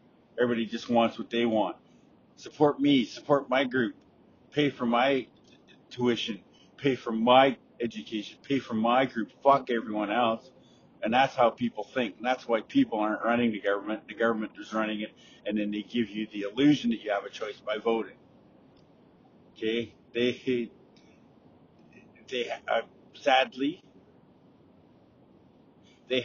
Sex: male